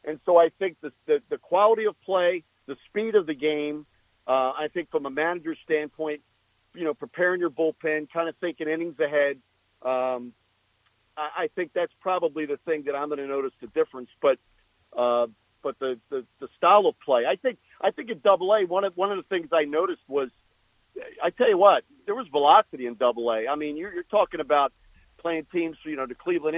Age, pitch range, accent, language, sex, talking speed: 50-69, 145-175 Hz, American, English, male, 210 wpm